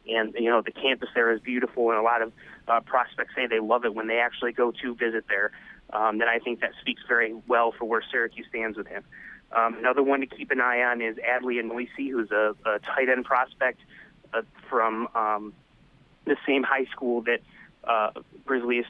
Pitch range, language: 110-120 Hz, English